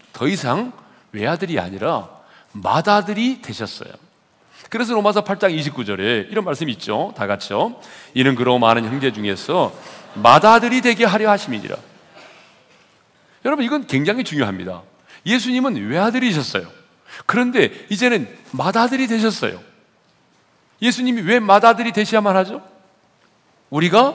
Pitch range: 160-240 Hz